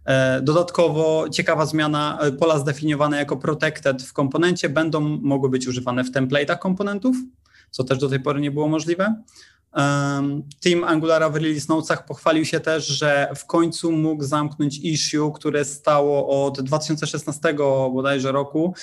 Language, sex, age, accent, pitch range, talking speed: Polish, male, 20-39, native, 140-155 Hz, 145 wpm